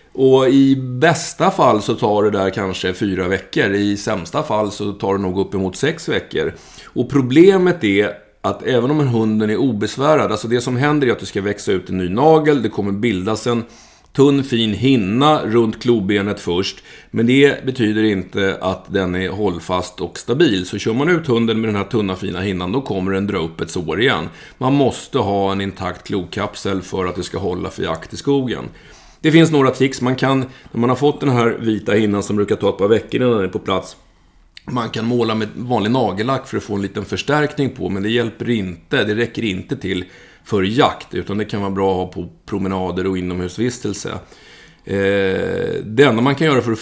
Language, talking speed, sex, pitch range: Swedish, 210 wpm, male, 95-125 Hz